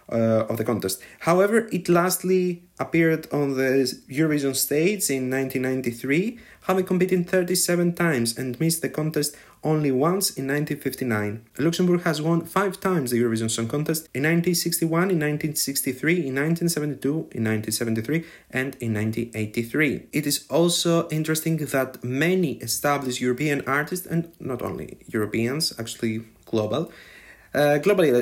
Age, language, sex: 30-49, English, male